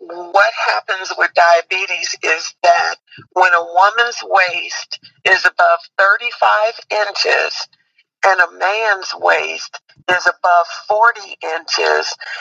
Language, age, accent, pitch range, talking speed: English, 50-69, American, 180-235 Hz, 105 wpm